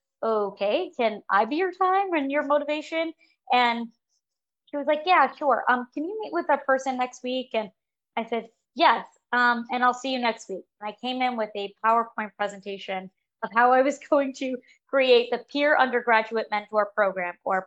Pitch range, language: 195-245 Hz, English